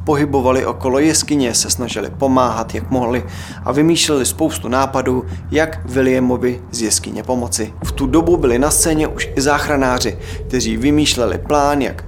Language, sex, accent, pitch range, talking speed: Czech, male, native, 105-135 Hz, 150 wpm